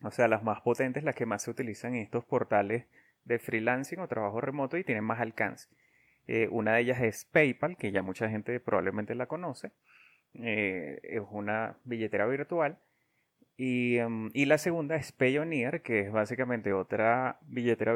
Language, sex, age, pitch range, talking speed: Spanish, male, 30-49, 110-130 Hz, 170 wpm